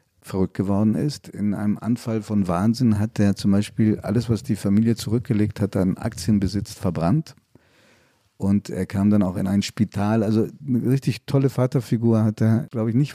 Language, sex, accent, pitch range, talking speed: German, male, German, 105-125 Hz, 180 wpm